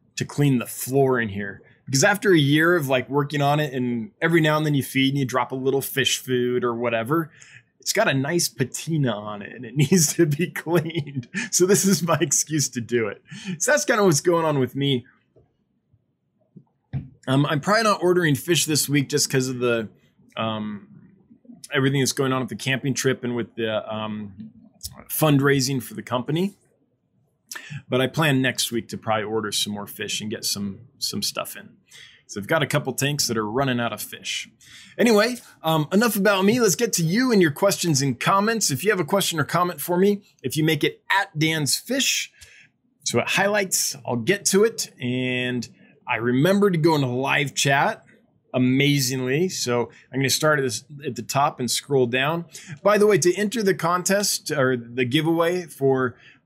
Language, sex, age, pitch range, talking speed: English, male, 20-39, 125-175 Hz, 200 wpm